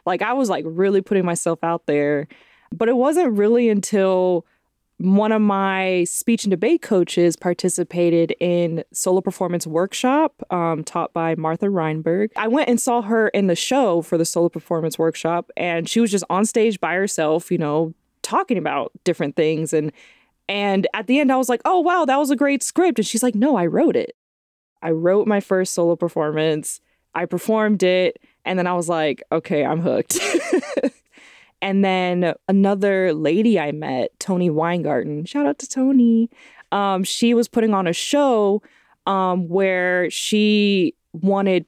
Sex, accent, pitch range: female, American, 170-225 Hz